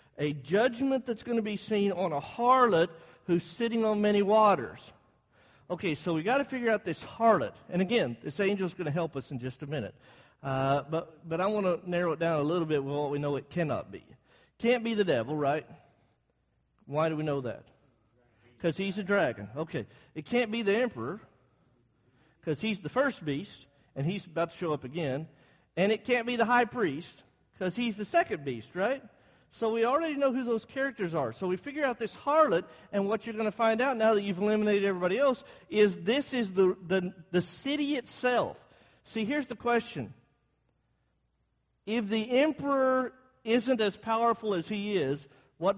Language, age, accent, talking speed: English, 50-69, American, 195 wpm